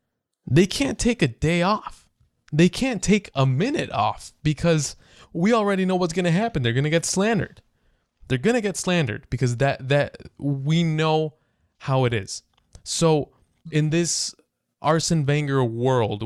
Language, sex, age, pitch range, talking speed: English, male, 20-39, 115-150 Hz, 160 wpm